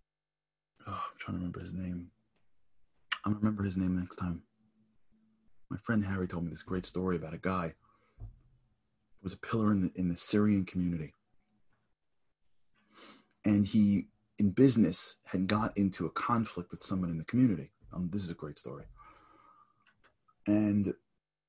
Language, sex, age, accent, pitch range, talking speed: English, male, 30-49, American, 85-110 Hz, 160 wpm